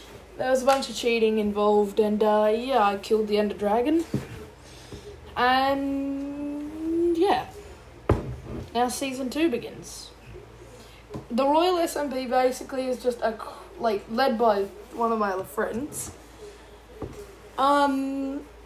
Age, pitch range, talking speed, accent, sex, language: 10-29, 205-275 Hz, 120 wpm, Australian, female, English